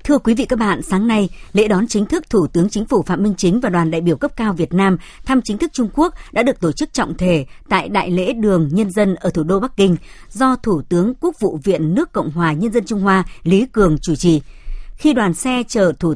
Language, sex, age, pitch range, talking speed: Vietnamese, male, 60-79, 175-235 Hz, 260 wpm